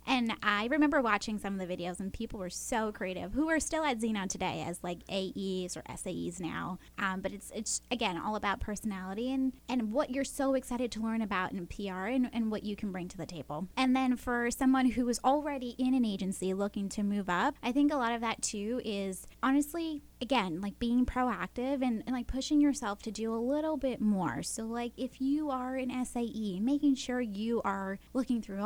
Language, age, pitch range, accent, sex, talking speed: English, 10-29, 200-255 Hz, American, female, 220 wpm